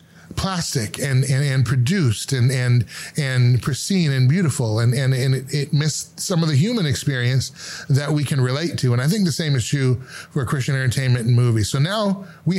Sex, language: male, English